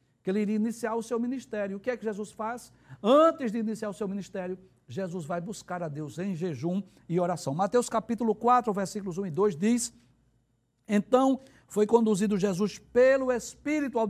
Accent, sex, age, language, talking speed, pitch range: Brazilian, male, 60-79, Portuguese, 185 wpm, 170-235 Hz